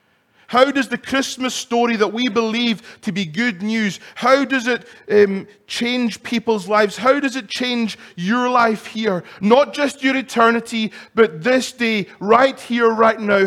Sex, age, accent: male, 30-49, British